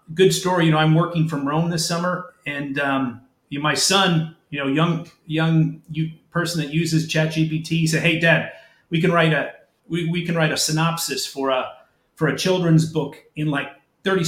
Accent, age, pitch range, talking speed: American, 40-59, 150-170 Hz, 200 wpm